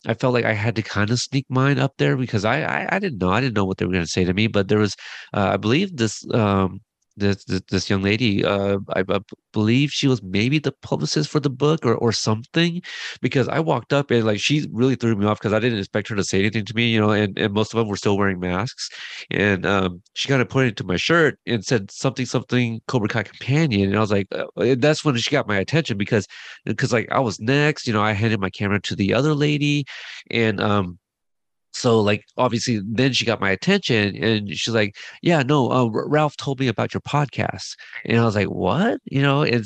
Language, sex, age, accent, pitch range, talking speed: English, male, 30-49, American, 100-130 Hz, 240 wpm